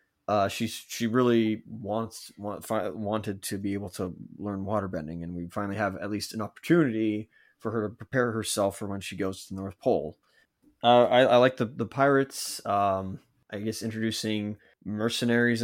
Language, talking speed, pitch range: English, 180 wpm, 95-115 Hz